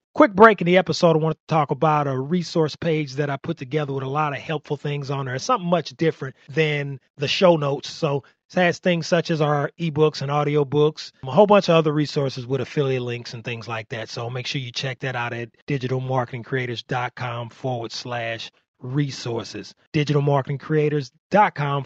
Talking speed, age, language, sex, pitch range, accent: 190 wpm, 30-49, English, male, 110-150 Hz, American